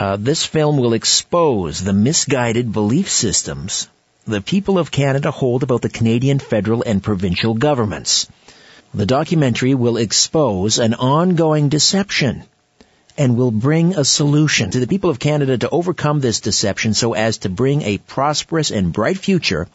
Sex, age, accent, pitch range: male, 50-69, American, 110-150 Hz